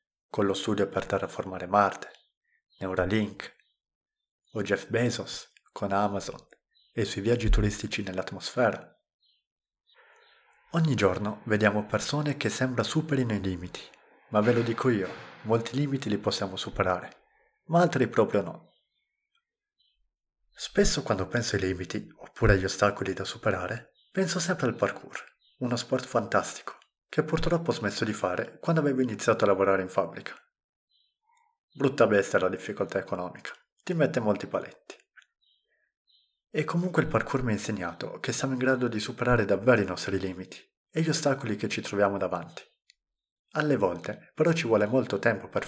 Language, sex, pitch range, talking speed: Italian, male, 100-160 Hz, 145 wpm